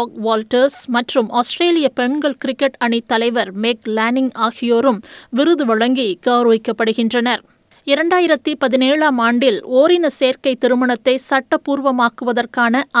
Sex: female